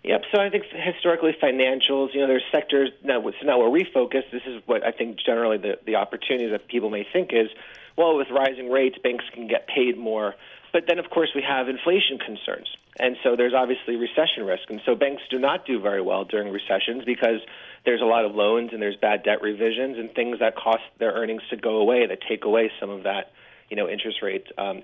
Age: 40-59